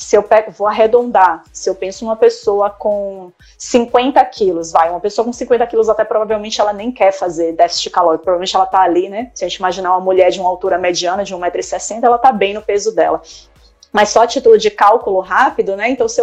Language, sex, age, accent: Portuguese, female, 20-39, Brazilian